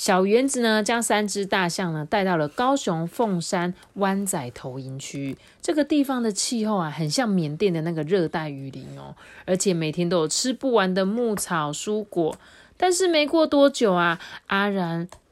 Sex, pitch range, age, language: female, 155-205 Hz, 30-49, Chinese